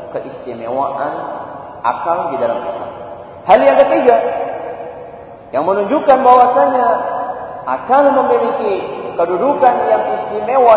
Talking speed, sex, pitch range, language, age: 90 wpm, male, 145-235 Hz, Malay, 40-59